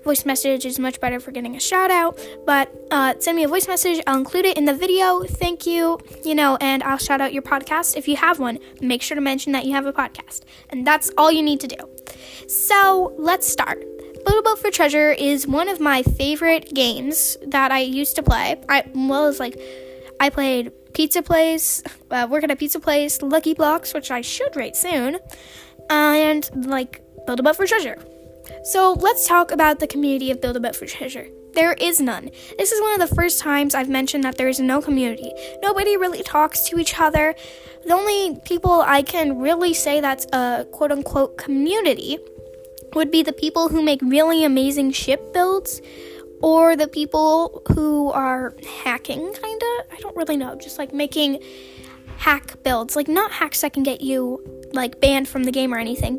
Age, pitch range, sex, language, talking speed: 10-29, 265-330 Hz, female, English, 195 wpm